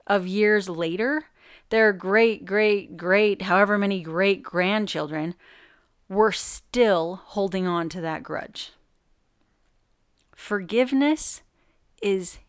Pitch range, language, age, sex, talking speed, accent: 175-235 Hz, English, 30-49, female, 95 wpm, American